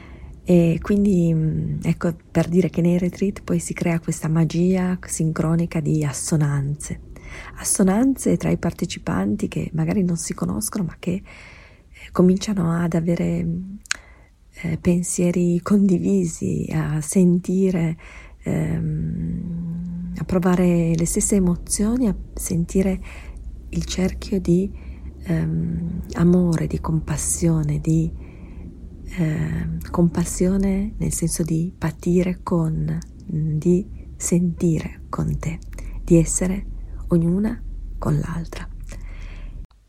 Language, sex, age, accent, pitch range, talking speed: Italian, female, 40-59, native, 160-185 Hz, 100 wpm